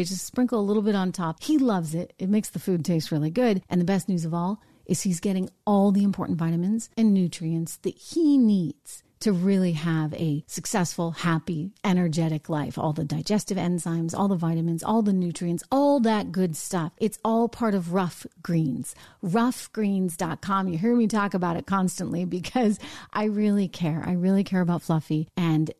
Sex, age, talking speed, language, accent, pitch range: female, 40-59, 190 wpm, English, American, 170-215 Hz